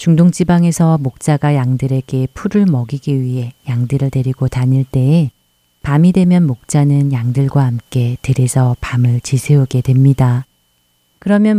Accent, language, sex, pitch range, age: native, Korean, female, 125-145 Hz, 30-49